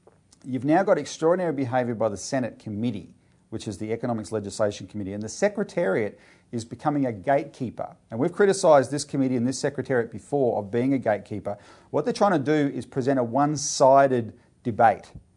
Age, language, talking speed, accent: 40-59, English, 175 wpm, Australian